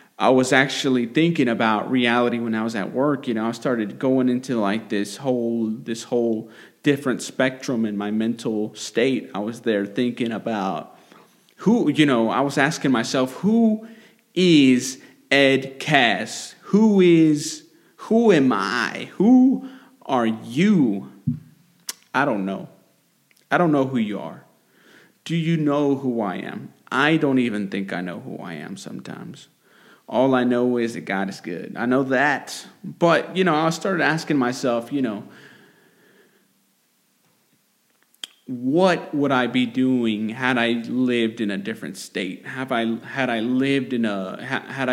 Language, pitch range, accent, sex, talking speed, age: English, 115-145 Hz, American, male, 155 wpm, 30-49